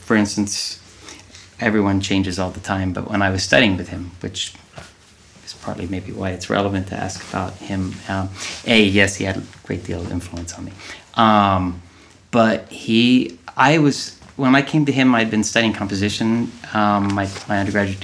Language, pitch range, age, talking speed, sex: English, 90-105 Hz, 30-49, 185 wpm, male